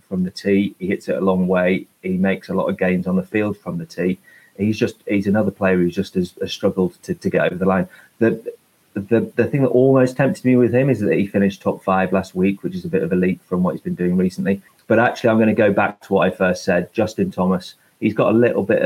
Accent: British